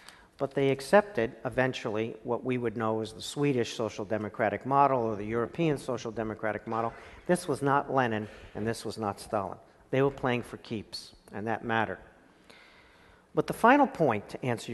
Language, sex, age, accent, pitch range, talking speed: English, male, 50-69, American, 115-160 Hz, 175 wpm